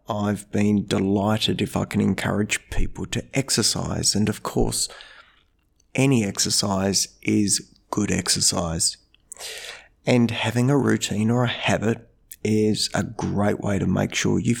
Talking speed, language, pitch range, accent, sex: 135 wpm, English, 105-130 Hz, Australian, male